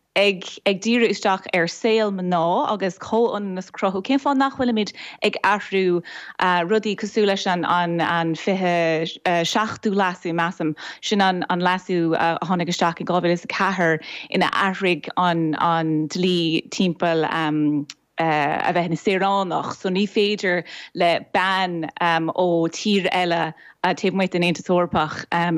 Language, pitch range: English, 170-215 Hz